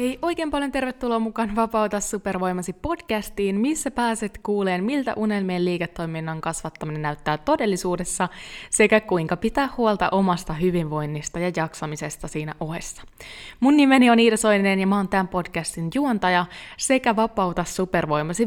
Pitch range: 170-225 Hz